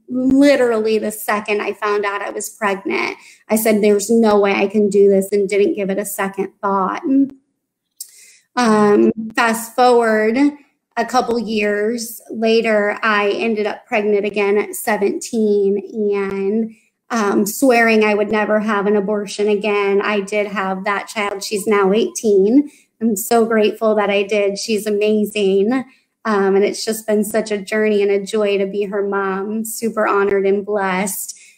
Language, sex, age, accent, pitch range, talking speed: English, female, 20-39, American, 205-225 Hz, 160 wpm